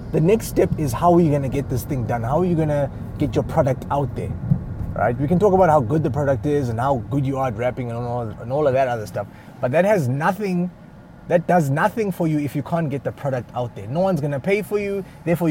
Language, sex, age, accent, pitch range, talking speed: English, male, 20-39, South African, 110-160 Hz, 265 wpm